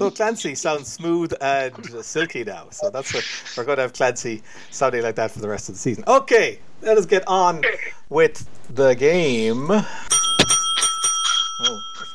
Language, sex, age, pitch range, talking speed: English, male, 60-79, 135-220 Hz, 170 wpm